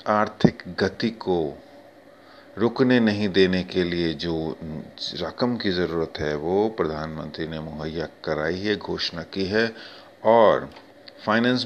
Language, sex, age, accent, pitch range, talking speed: Hindi, male, 30-49, native, 90-105 Hz, 125 wpm